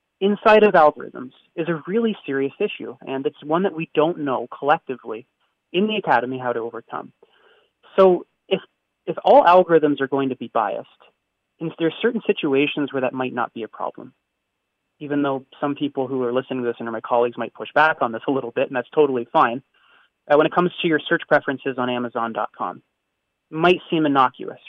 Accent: American